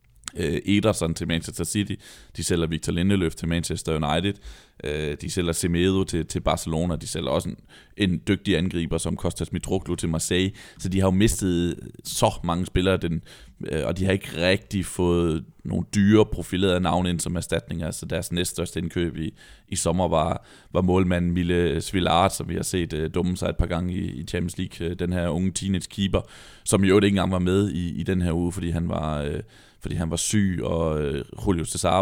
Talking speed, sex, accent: 200 wpm, male, native